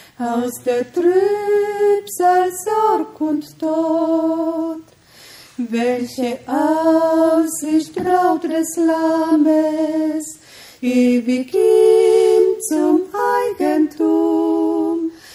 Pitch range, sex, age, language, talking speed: 245-360 Hz, female, 30-49, Romanian, 65 wpm